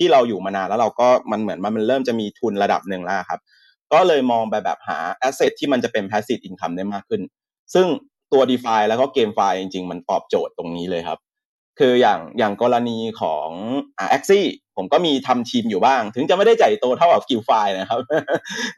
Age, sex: 30-49, male